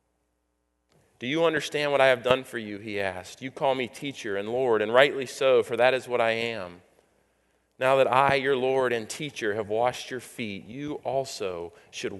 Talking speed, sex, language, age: 195 wpm, male, English, 30-49